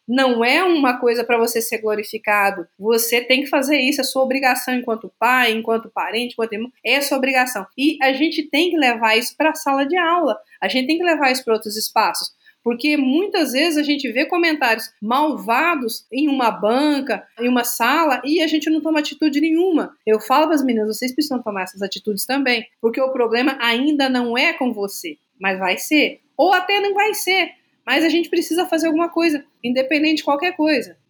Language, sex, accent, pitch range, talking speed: Portuguese, female, Brazilian, 230-305 Hz, 205 wpm